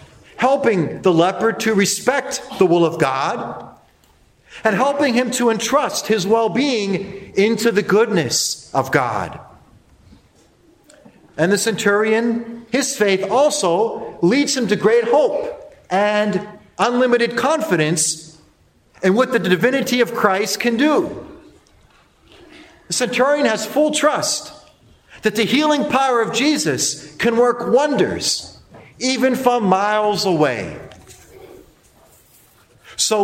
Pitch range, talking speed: 190-260 Hz, 110 wpm